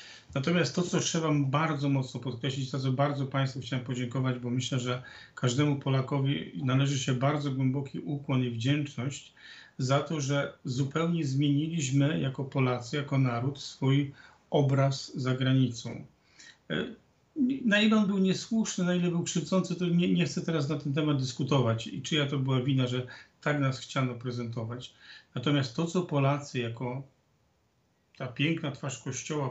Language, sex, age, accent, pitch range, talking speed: Polish, male, 40-59, native, 130-145 Hz, 155 wpm